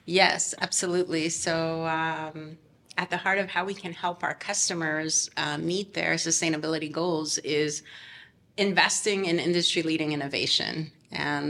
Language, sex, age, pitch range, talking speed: English, female, 30-49, 155-180 Hz, 130 wpm